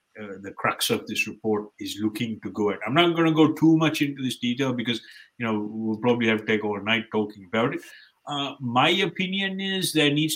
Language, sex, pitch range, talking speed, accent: English, male, 110-145 Hz, 225 wpm, Indian